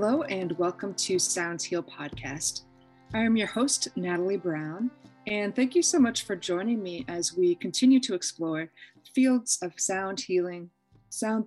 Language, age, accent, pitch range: English, 30-49, American, 165-210 Hz